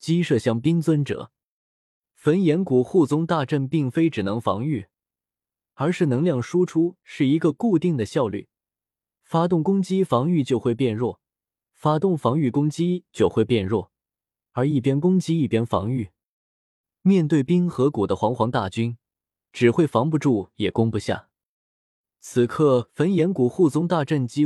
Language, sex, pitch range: Chinese, male, 115-170 Hz